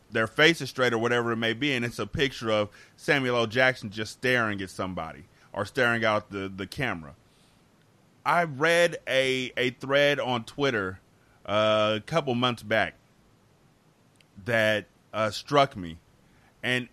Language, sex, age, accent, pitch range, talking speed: English, male, 30-49, American, 115-130 Hz, 150 wpm